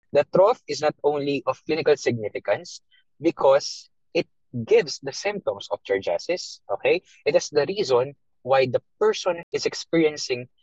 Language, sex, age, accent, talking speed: English, male, 20-39, Filipino, 140 wpm